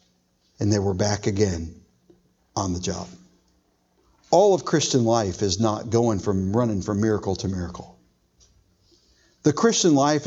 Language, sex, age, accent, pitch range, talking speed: English, male, 50-69, American, 90-130 Hz, 140 wpm